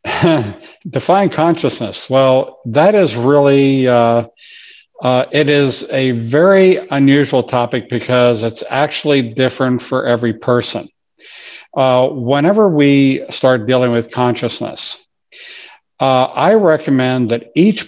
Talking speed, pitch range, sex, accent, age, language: 110 wpm, 125-150 Hz, male, American, 50-69, English